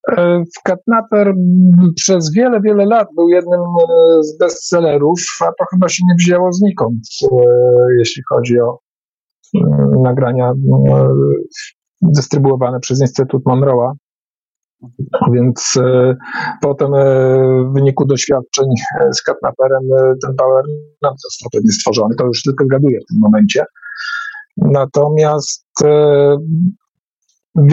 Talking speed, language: 115 wpm, Polish